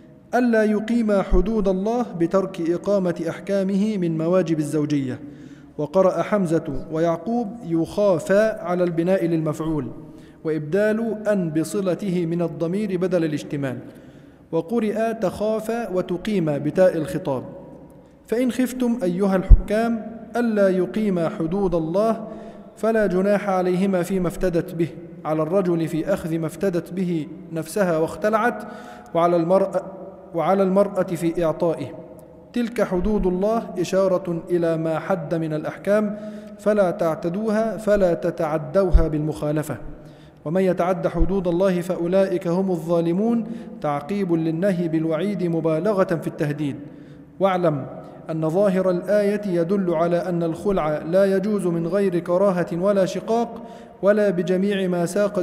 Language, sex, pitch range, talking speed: Arabic, male, 165-205 Hz, 115 wpm